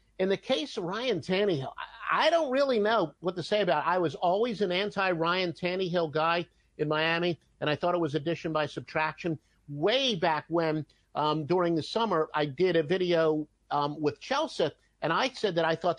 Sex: male